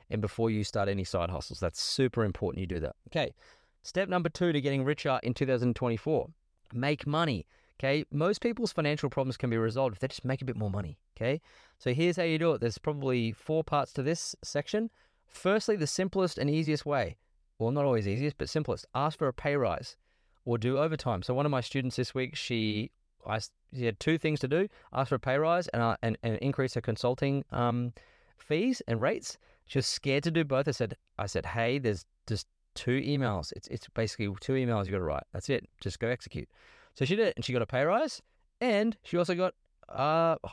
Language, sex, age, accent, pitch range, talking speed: English, male, 30-49, Australian, 115-155 Hz, 220 wpm